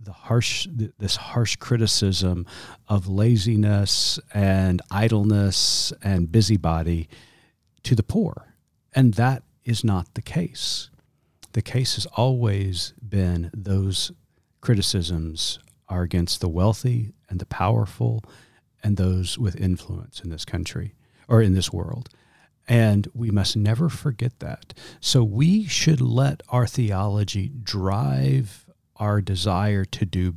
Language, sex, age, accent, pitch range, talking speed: English, male, 40-59, American, 95-125 Hz, 125 wpm